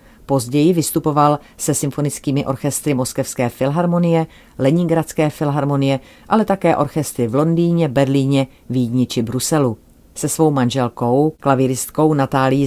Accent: native